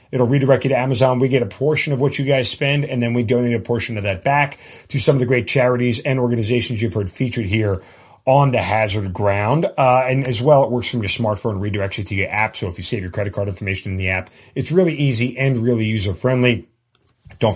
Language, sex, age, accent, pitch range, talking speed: English, male, 40-59, American, 105-130 Hz, 245 wpm